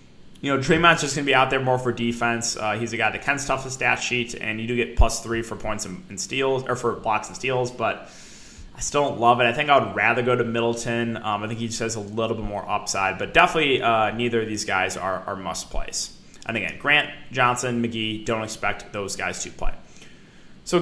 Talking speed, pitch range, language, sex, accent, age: 250 wpm, 115-135 Hz, English, male, American, 20-39